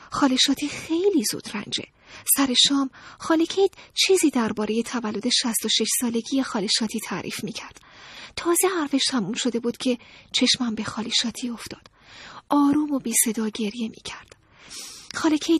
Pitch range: 230-300 Hz